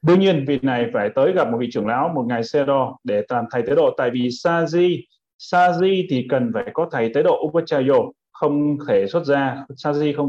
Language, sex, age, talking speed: Vietnamese, male, 20-39, 220 wpm